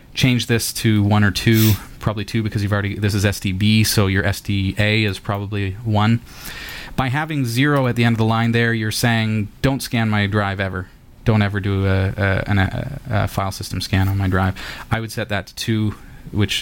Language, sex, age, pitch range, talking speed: English, male, 30-49, 100-120 Hz, 200 wpm